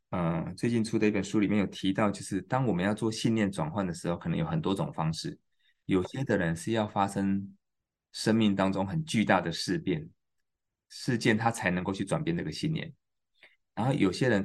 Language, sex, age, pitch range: Chinese, male, 20-39, 95-115 Hz